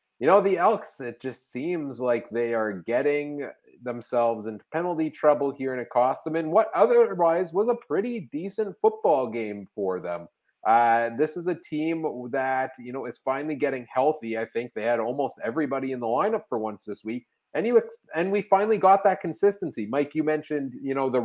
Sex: male